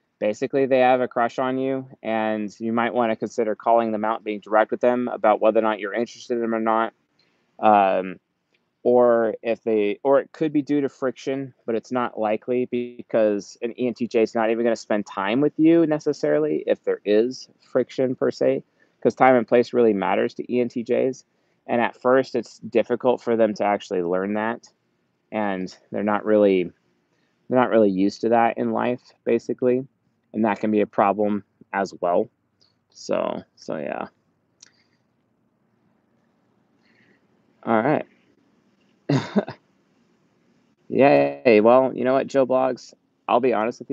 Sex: male